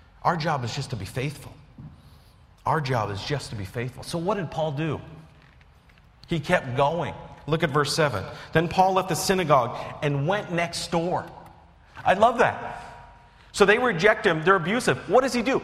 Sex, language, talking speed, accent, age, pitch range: male, English, 185 wpm, American, 40-59, 115-165 Hz